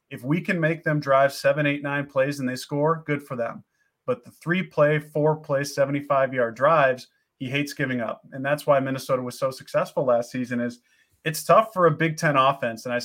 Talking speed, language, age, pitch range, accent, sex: 205 wpm, English, 30-49, 130-160 Hz, American, male